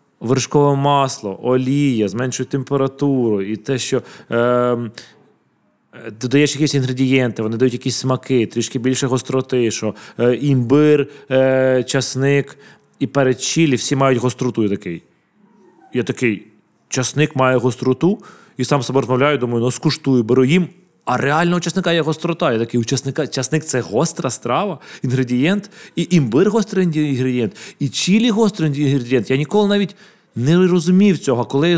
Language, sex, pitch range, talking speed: Ukrainian, male, 125-150 Hz, 140 wpm